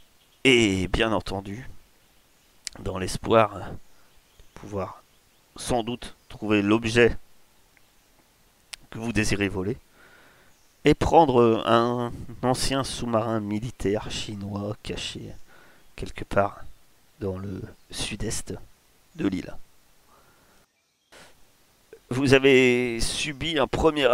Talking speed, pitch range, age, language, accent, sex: 85 wpm, 100-120 Hz, 40-59, French, French, male